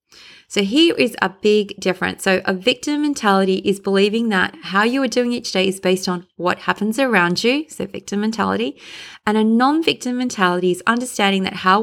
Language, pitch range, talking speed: English, 190-245 Hz, 190 wpm